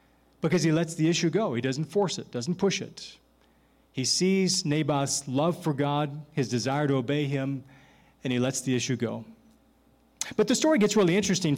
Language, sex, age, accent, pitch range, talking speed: English, male, 40-59, American, 145-190 Hz, 185 wpm